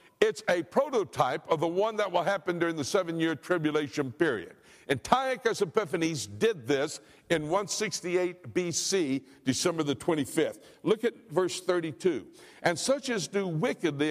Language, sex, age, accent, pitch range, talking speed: English, male, 60-79, American, 175-235 Hz, 145 wpm